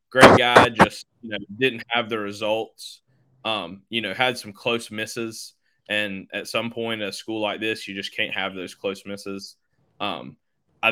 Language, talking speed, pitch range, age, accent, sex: English, 180 wpm, 105-115 Hz, 20-39, American, male